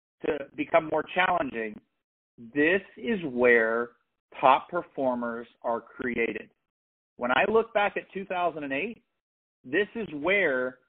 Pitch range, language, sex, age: 125-180 Hz, English, male, 40-59